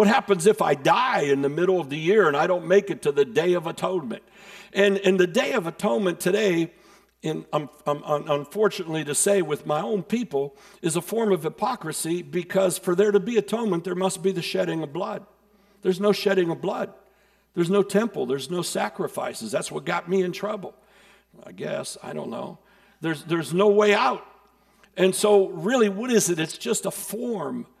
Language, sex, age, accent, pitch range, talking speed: English, male, 60-79, American, 170-205 Hz, 200 wpm